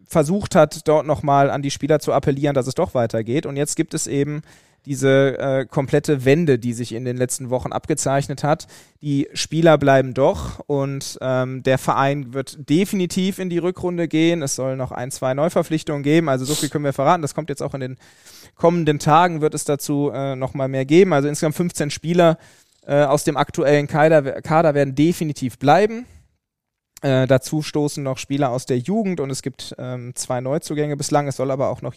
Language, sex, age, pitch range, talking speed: German, male, 20-39, 135-160 Hz, 195 wpm